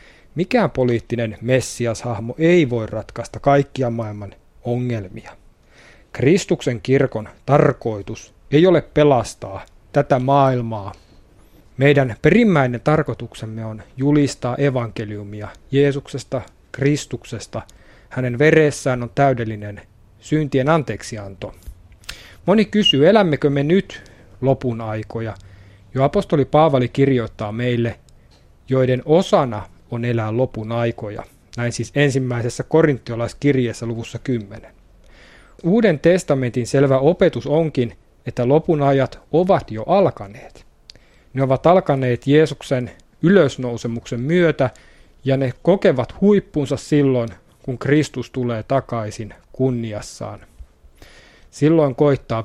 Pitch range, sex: 115-145 Hz, male